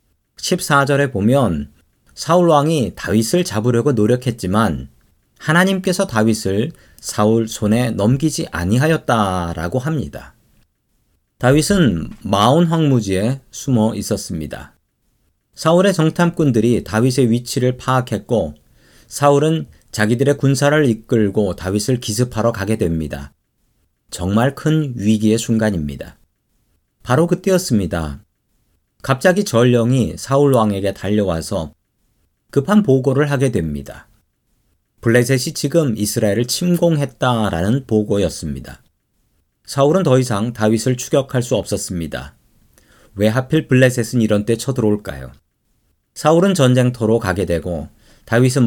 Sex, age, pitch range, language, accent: male, 40-59, 105-140 Hz, Korean, native